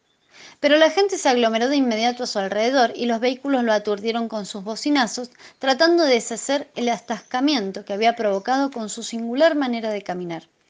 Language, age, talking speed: Spanish, 20-39, 180 wpm